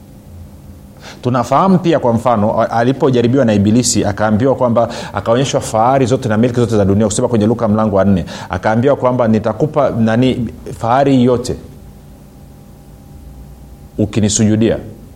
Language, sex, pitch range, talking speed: Swahili, male, 100-135 Hz, 120 wpm